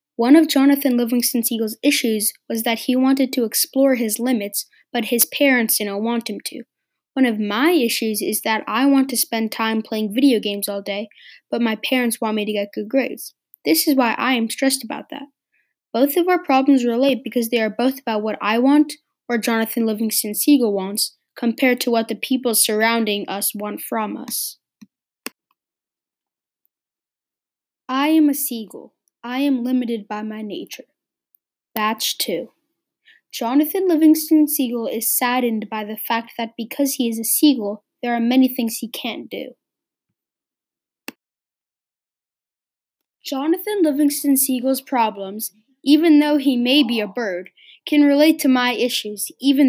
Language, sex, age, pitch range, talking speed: English, female, 10-29, 225-280 Hz, 155 wpm